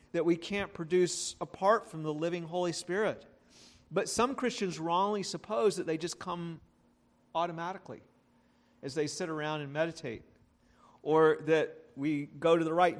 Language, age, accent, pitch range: English, 40-59, American, 160-195 Hz